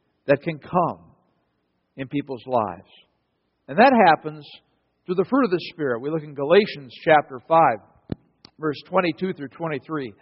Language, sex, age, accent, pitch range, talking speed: English, male, 60-79, American, 135-170 Hz, 140 wpm